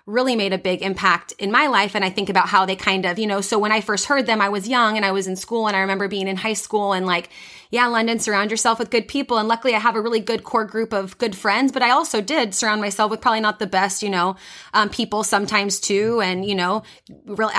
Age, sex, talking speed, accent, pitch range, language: 30-49, female, 275 wpm, American, 195-235 Hz, English